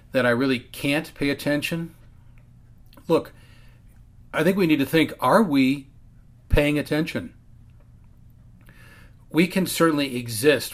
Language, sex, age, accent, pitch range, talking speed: English, male, 40-59, American, 115-135 Hz, 115 wpm